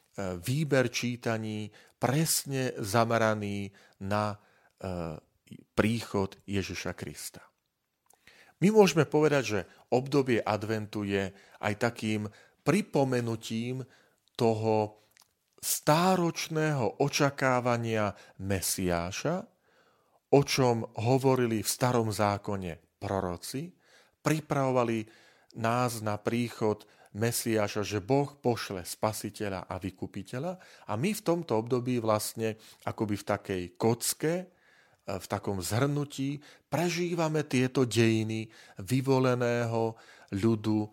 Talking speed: 85 wpm